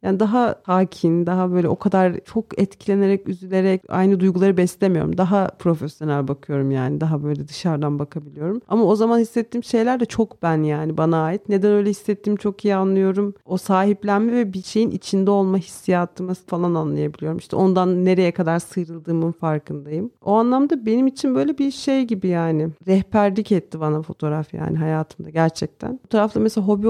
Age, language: 40-59, Turkish